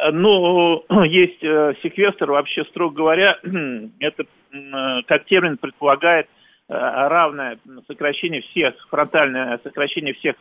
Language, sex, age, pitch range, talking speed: Russian, male, 40-59, 135-170 Hz, 110 wpm